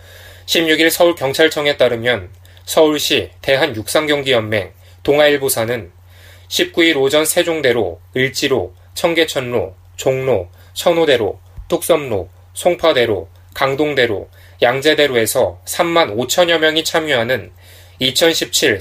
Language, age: Korean, 20-39